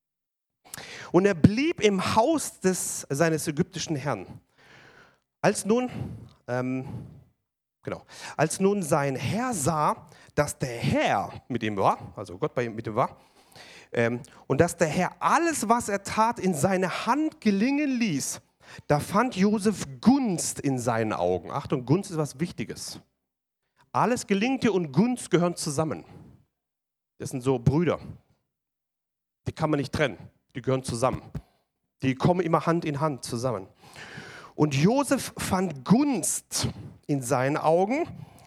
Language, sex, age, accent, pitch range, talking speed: German, male, 40-59, German, 130-195 Hz, 135 wpm